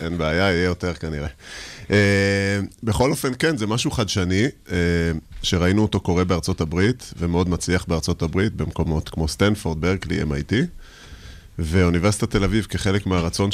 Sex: male